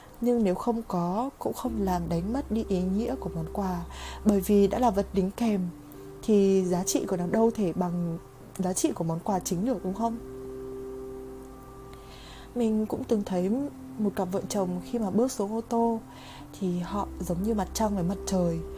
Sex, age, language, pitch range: female, 20-39, Vietnamese, 175-225 Hz